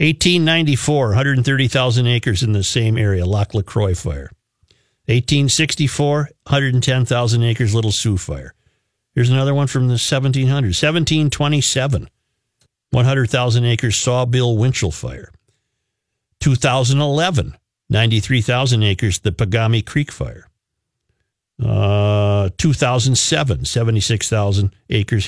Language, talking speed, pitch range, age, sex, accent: English, 95 wpm, 105-130 Hz, 50-69, male, American